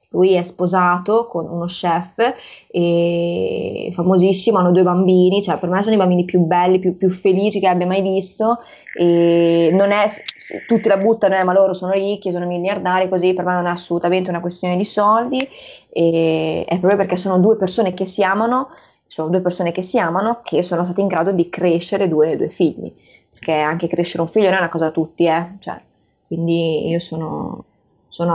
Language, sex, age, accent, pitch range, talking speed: Italian, female, 20-39, native, 170-195 Hz, 195 wpm